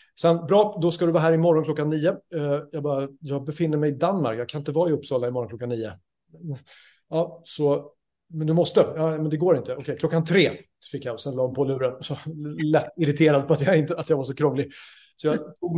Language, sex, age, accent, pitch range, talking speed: Swedish, male, 30-49, native, 135-160 Hz, 235 wpm